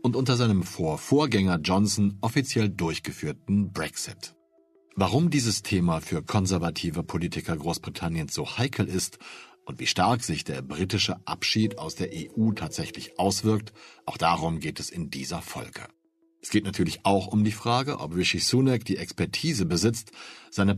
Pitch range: 85-115 Hz